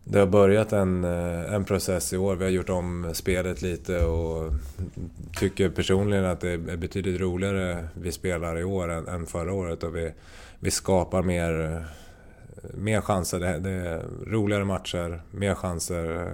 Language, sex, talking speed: Swedish, male, 160 wpm